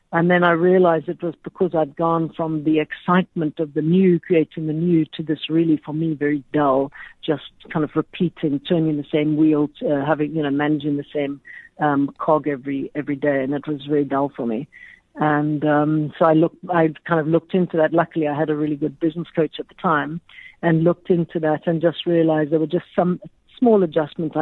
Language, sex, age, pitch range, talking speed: English, female, 60-79, 155-185 Hz, 215 wpm